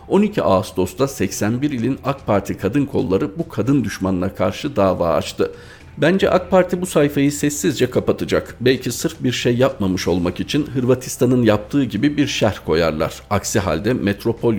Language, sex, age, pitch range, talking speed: Turkish, male, 50-69, 95-130 Hz, 150 wpm